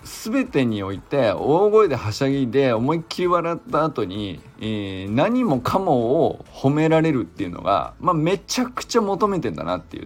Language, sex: Japanese, male